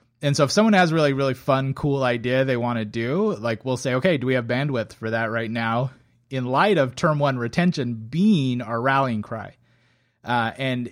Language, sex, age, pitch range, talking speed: English, male, 30-49, 115-135 Hz, 215 wpm